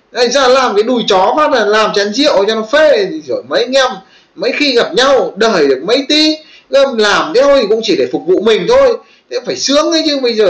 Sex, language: male, Vietnamese